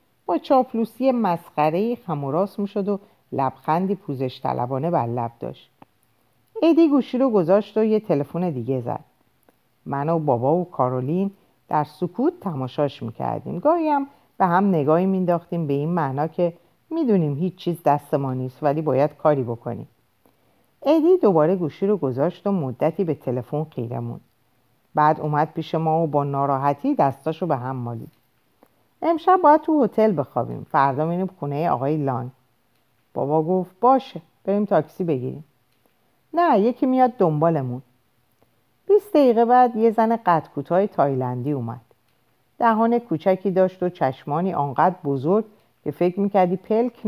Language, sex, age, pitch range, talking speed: Persian, female, 50-69, 135-200 Hz, 145 wpm